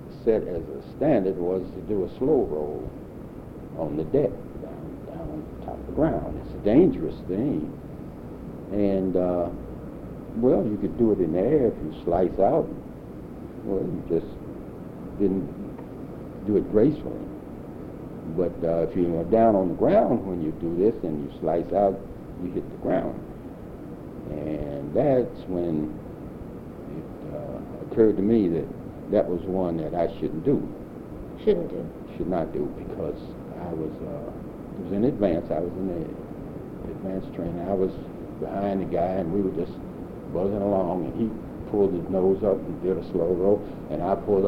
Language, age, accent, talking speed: English, 60-79, American, 170 wpm